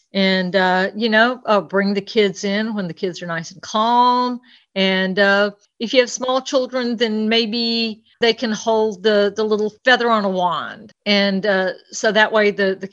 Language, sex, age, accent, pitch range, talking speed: English, female, 50-69, American, 195-245 Hz, 195 wpm